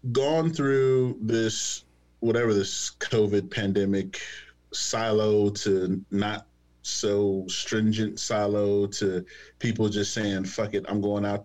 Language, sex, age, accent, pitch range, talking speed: English, male, 30-49, American, 95-115 Hz, 115 wpm